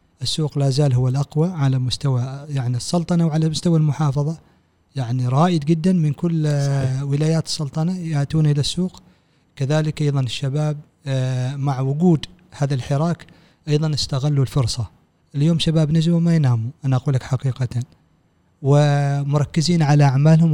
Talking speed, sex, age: 130 wpm, male, 40-59